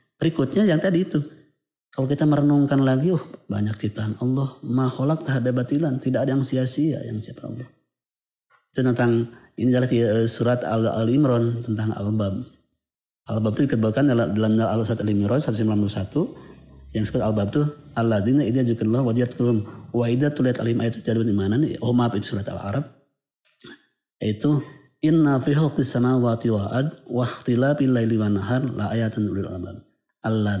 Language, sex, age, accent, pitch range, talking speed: Indonesian, male, 30-49, native, 110-140 Hz, 140 wpm